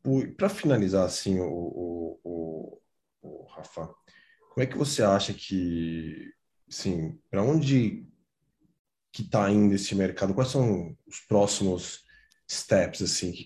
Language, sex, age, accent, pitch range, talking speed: Portuguese, male, 20-39, Brazilian, 95-115 Hz, 140 wpm